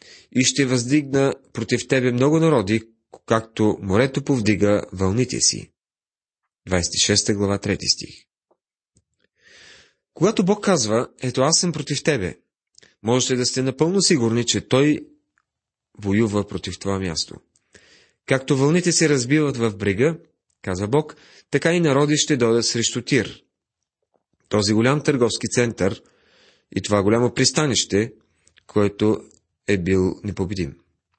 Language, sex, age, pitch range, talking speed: Bulgarian, male, 30-49, 105-140 Hz, 120 wpm